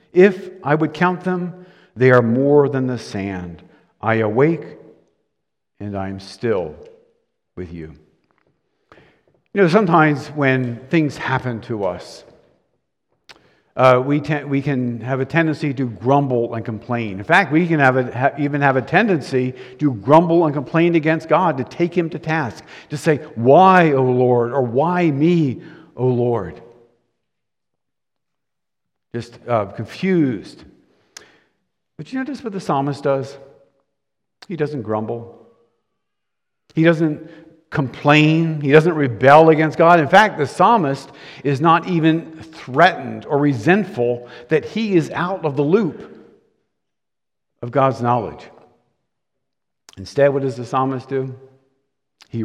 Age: 50-69